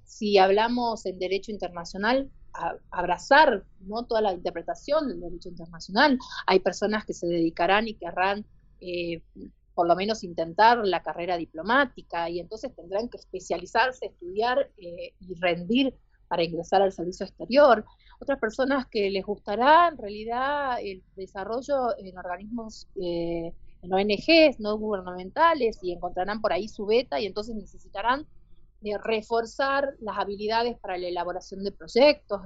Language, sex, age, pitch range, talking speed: Spanish, female, 30-49, 180-240 Hz, 140 wpm